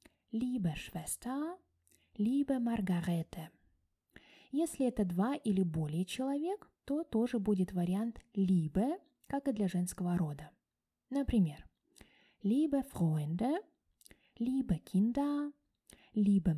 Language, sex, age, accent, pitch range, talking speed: Russian, female, 20-39, native, 175-275 Hz, 95 wpm